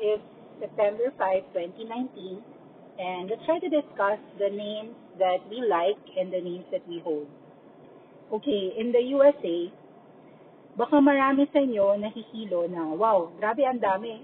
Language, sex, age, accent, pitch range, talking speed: English, female, 40-59, Filipino, 190-245 Hz, 145 wpm